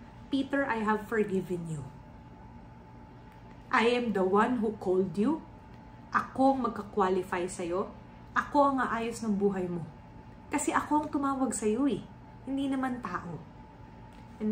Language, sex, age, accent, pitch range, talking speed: English, female, 30-49, Filipino, 200-255 Hz, 135 wpm